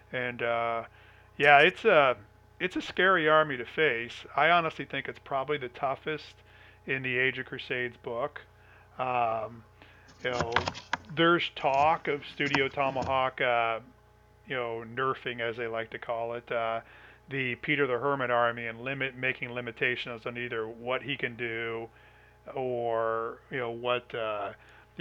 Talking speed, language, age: 150 wpm, English, 40-59